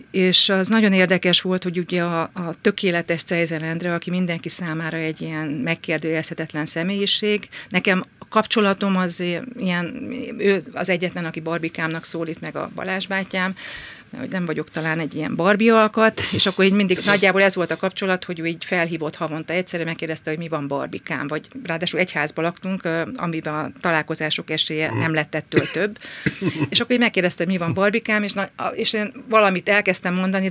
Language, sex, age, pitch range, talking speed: Hungarian, female, 50-69, 160-200 Hz, 165 wpm